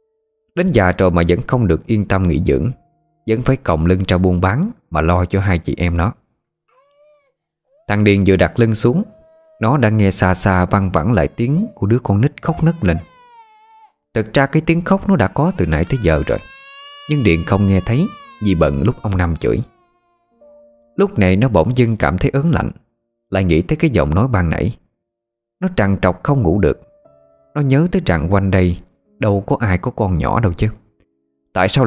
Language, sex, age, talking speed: Vietnamese, male, 20-39, 205 wpm